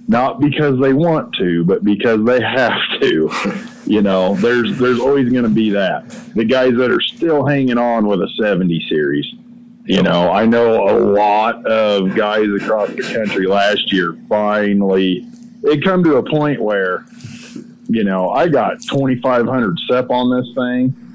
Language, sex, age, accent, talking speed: English, male, 40-59, American, 165 wpm